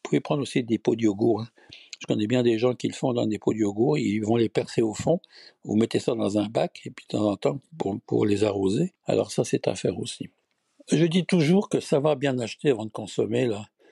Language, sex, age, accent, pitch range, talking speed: French, male, 60-79, French, 105-140 Hz, 260 wpm